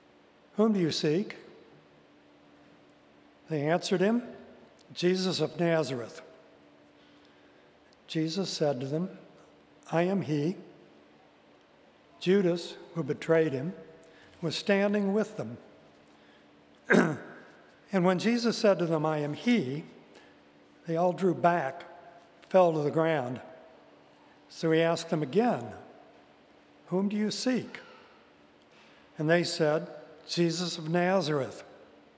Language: English